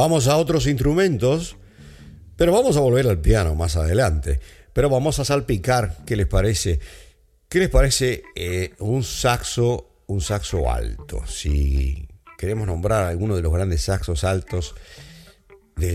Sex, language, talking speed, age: male, Spanish, 145 wpm, 50-69